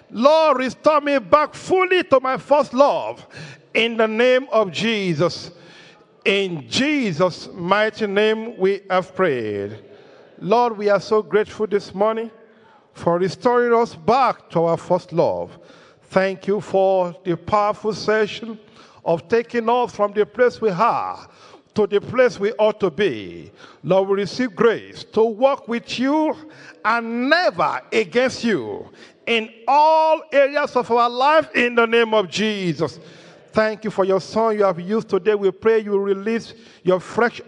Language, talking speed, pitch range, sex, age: English, 150 wpm, 210-290 Hz, male, 50-69